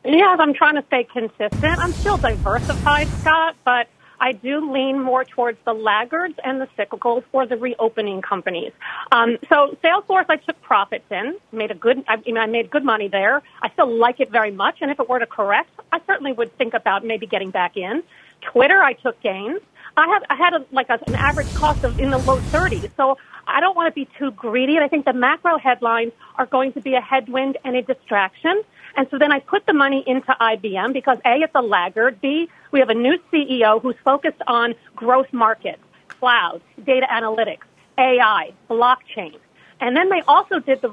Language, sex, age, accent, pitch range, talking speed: English, female, 40-59, American, 235-310 Hz, 210 wpm